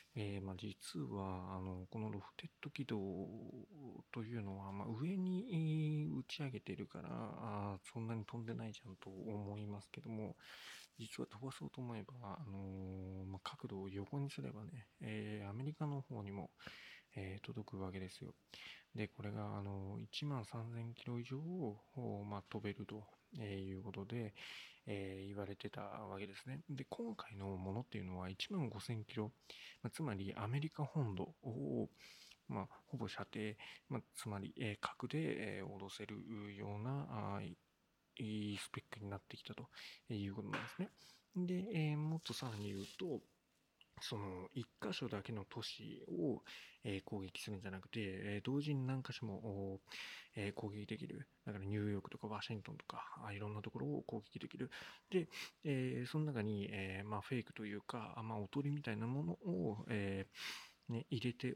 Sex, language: male, Japanese